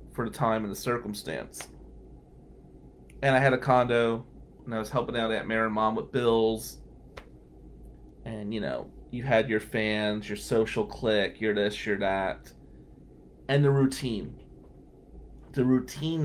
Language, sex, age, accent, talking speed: English, male, 30-49, American, 150 wpm